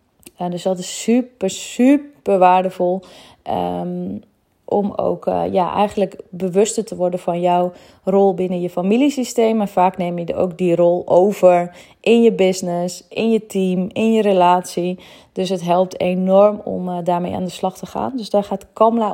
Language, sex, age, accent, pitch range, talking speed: Dutch, female, 20-39, Dutch, 180-205 Hz, 170 wpm